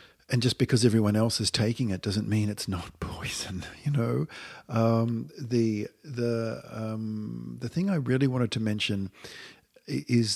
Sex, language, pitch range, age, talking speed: male, English, 95-120 Hz, 50-69, 155 wpm